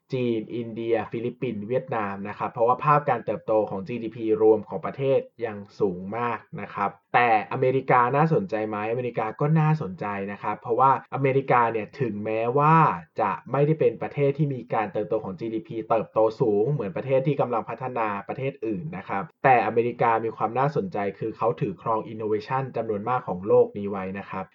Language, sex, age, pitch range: Thai, male, 20-39, 110-145 Hz